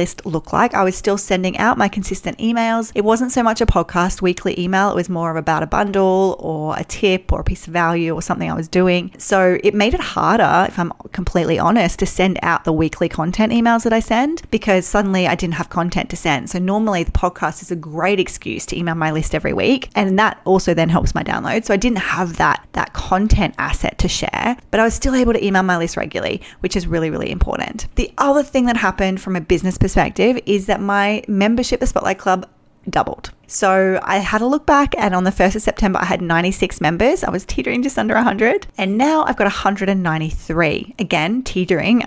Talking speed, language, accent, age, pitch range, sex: 225 wpm, English, Australian, 30-49, 175-220 Hz, female